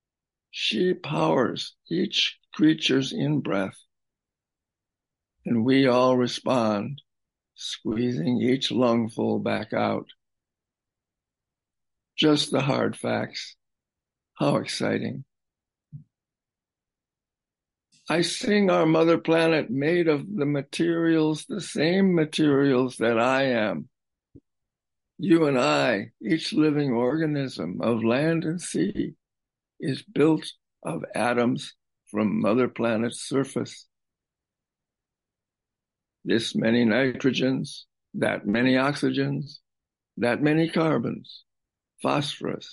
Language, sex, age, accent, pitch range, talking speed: English, male, 60-79, American, 115-160 Hz, 90 wpm